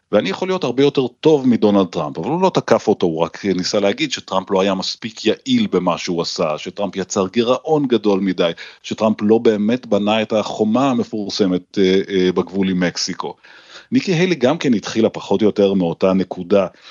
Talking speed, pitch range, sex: 175 wpm, 95-125 Hz, male